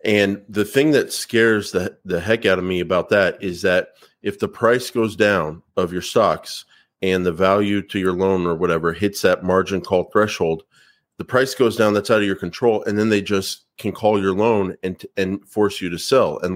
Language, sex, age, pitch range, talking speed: English, male, 30-49, 95-105 Hz, 220 wpm